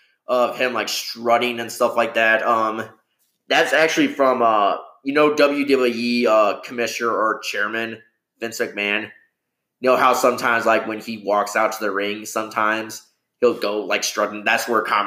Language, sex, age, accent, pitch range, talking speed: English, male, 20-39, American, 110-130 Hz, 165 wpm